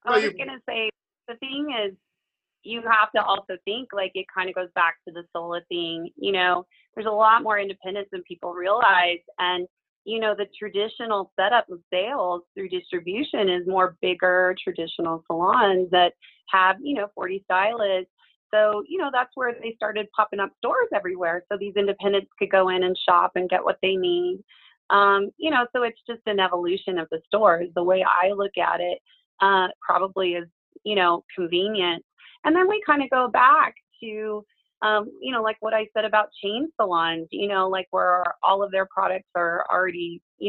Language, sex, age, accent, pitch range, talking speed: English, female, 30-49, American, 180-215 Hz, 195 wpm